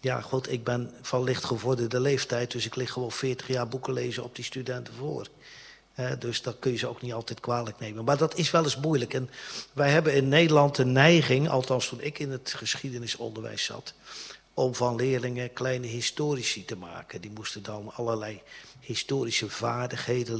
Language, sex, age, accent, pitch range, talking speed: Dutch, male, 50-69, Dutch, 115-130 Hz, 185 wpm